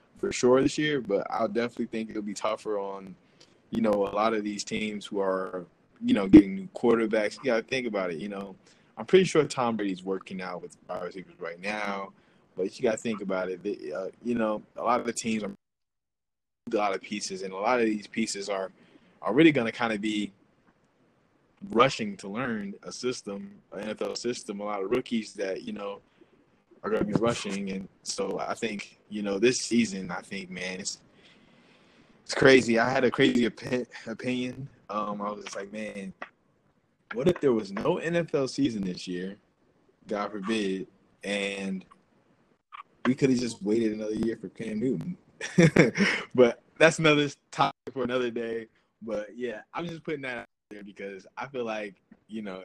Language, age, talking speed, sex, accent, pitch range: English, 20-39, 195 wpm, male, American, 100-125 Hz